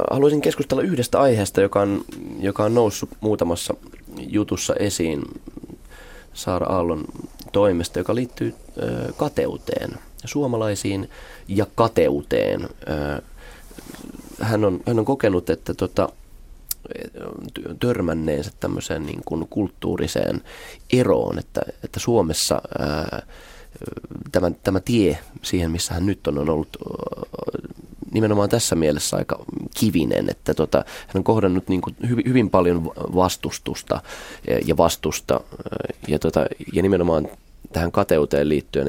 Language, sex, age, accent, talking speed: Finnish, male, 20-39, native, 115 wpm